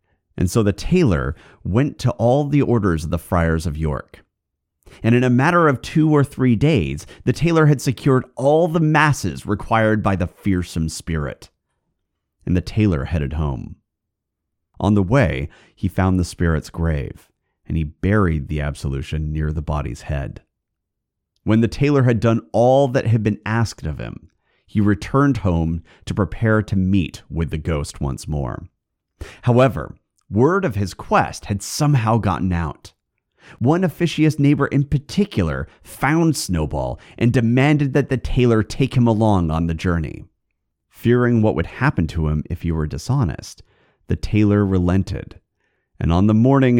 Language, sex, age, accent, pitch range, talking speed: English, male, 30-49, American, 80-125 Hz, 160 wpm